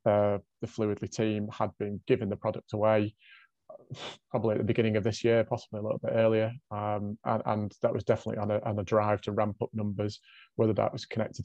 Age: 30-49